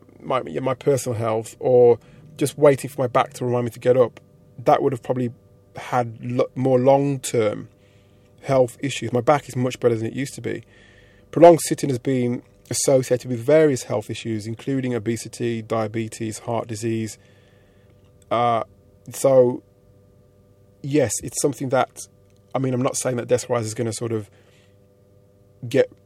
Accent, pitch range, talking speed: British, 110-130 Hz, 160 wpm